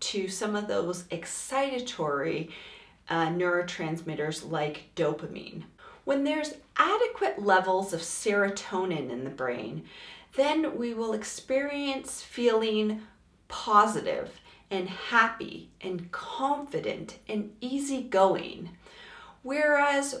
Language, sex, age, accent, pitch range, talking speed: English, female, 40-59, American, 175-260 Hz, 90 wpm